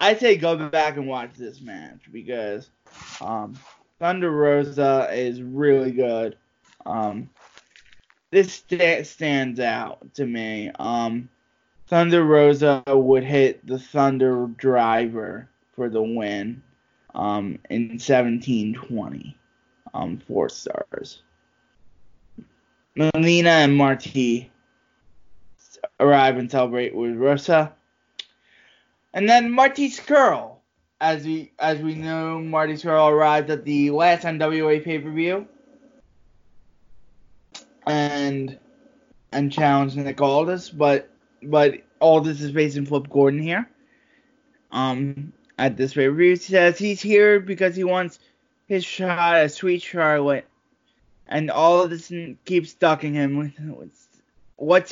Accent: American